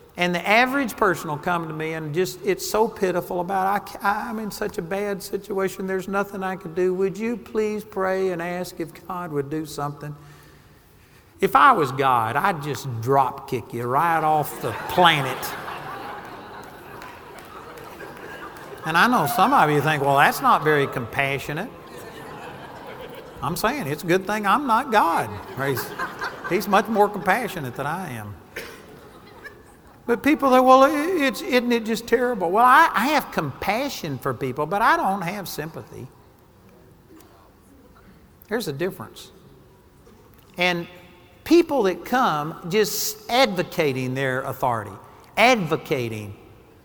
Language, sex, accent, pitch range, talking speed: English, male, American, 140-200 Hz, 140 wpm